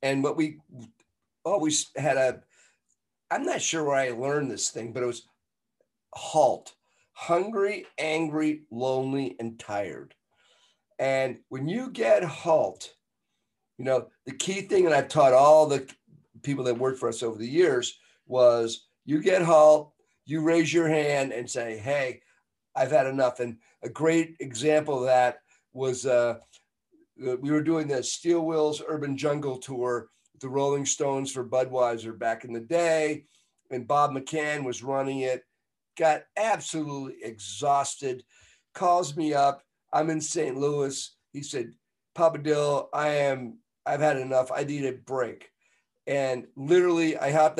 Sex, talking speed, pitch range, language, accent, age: male, 150 wpm, 130-155 Hz, English, American, 50-69